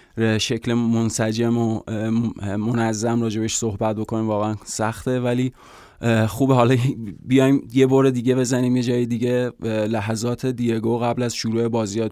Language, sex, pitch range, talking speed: Persian, male, 110-125 Hz, 130 wpm